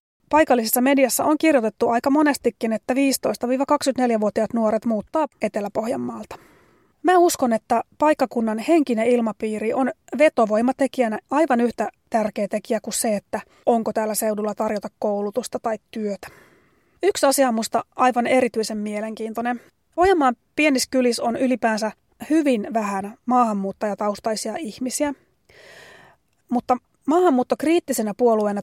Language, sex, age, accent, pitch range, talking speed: Finnish, female, 30-49, native, 220-265 Hz, 105 wpm